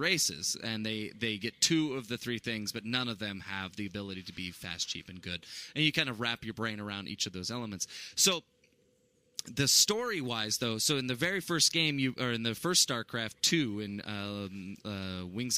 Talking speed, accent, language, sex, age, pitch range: 215 wpm, American, English, male, 20-39, 105-135 Hz